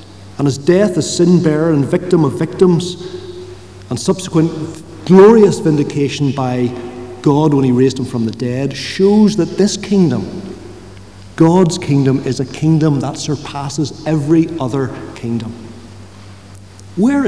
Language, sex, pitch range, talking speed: English, male, 115-165 Hz, 130 wpm